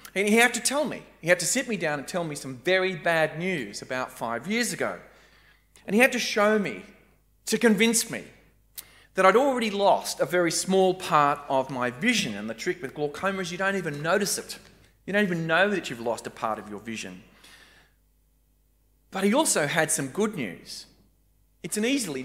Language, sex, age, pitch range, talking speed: English, male, 30-49, 145-220 Hz, 205 wpm